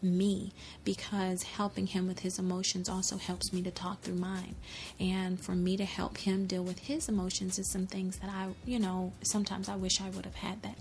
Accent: American